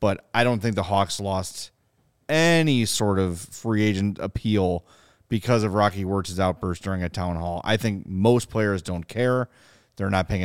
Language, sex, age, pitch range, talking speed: English, male, 30-49, 95-130 Hz, 180 wpm